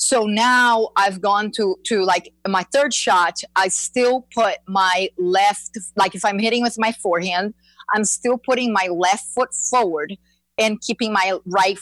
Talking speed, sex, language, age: 170 wpm, female, English, 30-49